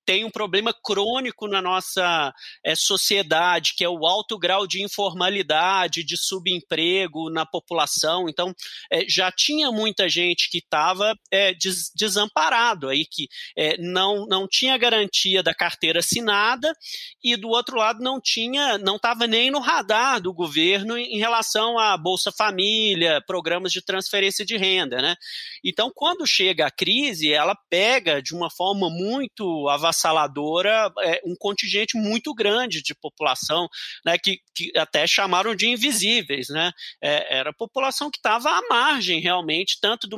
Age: 30-49